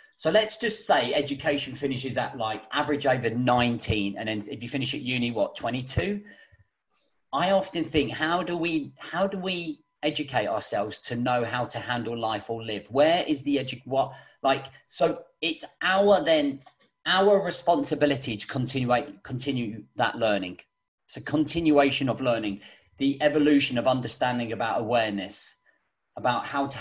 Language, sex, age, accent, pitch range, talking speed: English, male, 40-59, British, 125-150 Hz, 155 wpm